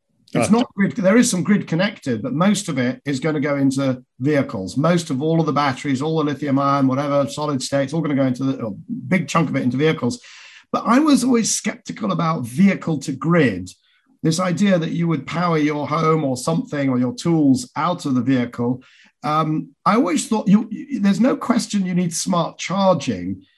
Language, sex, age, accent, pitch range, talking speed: English, male, 50-69, British, 140-200 Hz, 210 wpm